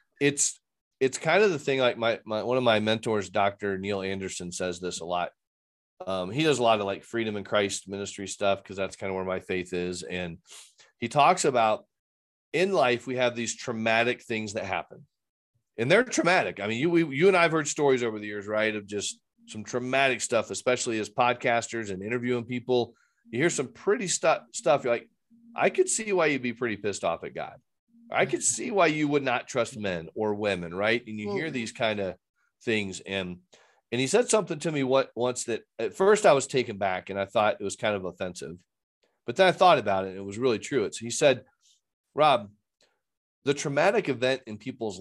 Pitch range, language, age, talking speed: 100-135 Hz, English, 40-59, 215 wpm